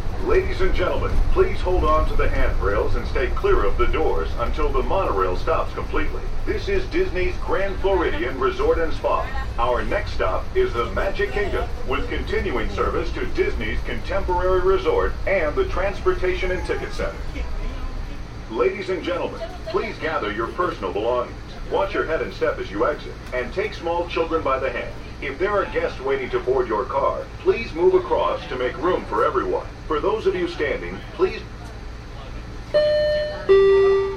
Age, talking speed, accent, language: 50-69, 165 wpm, American, English